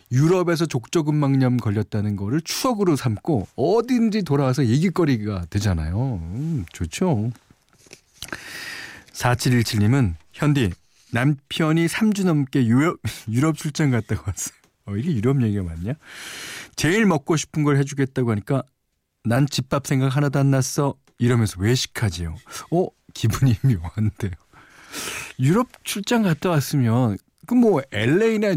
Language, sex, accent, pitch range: Korean, male, native, 110-160 Hz